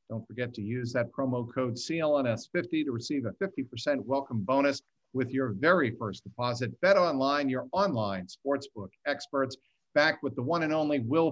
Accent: American